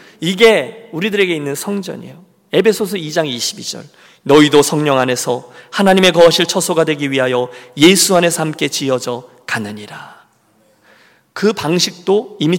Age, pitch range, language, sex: 40-59, 130-180 Hz, Korean, male